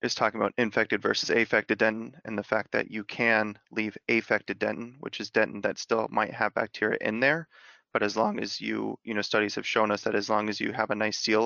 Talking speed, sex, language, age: 240 wpm, male, English, 30-49